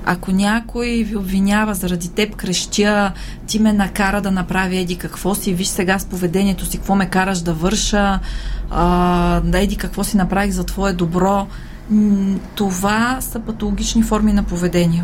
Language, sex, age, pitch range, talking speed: Bulgarian, female, 30-49, 180-210 Hz, 150 wpm